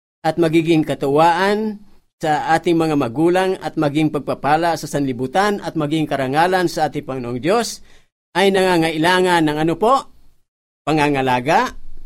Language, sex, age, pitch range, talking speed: Filipino, male, 50-69, 125-195 Hz, 125 wpm